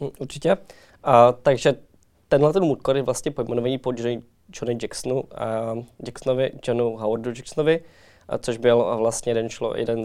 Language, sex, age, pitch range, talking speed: Czech, male, 20-39, 110-125 Hz, 130 wpm